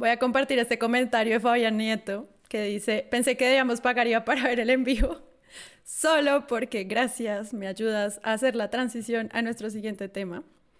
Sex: female